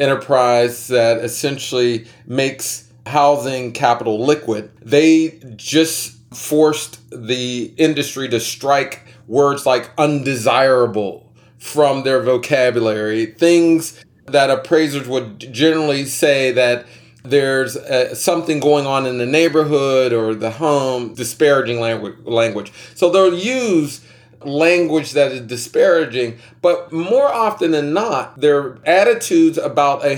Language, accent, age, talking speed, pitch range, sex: English, American, 40-59, 110 wpm, 125-160 Hz, male